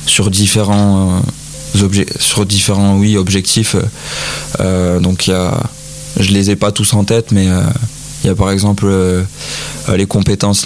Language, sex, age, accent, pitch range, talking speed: French, male, 20-39, French, 95-105 Hz, 165 wpm